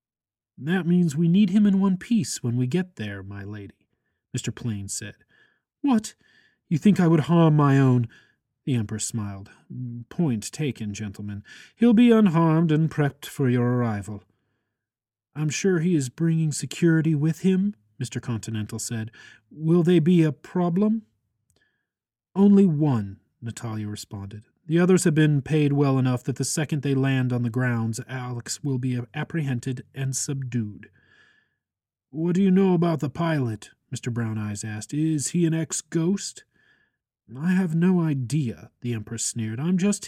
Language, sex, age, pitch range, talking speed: English, male, 30-49, 115-170 Hz, 155 wpm